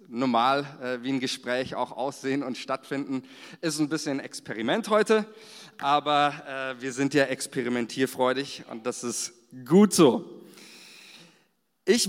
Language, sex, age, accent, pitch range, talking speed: German, male, 40-59, German, 135-160 Hz, 130 wpm